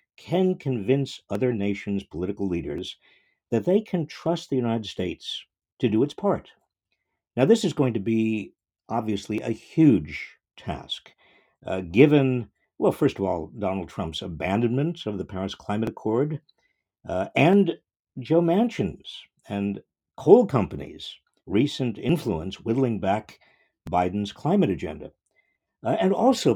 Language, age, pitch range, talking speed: English, 50-69, 100-155 Hz, 130 wpm